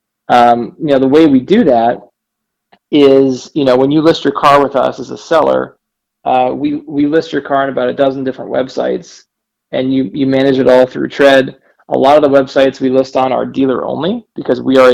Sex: male